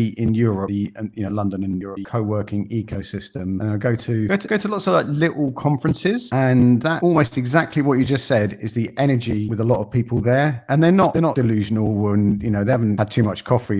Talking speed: 240 wpm